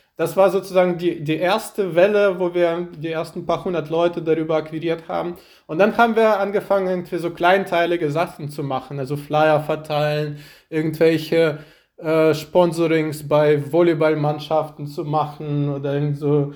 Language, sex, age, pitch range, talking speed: German, male, 20-39, 155-180 Hz, 140 wpm